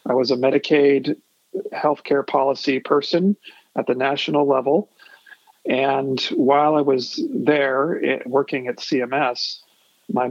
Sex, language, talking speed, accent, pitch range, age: male, English, 115 wpm, American, 125-145 Hz, 40-59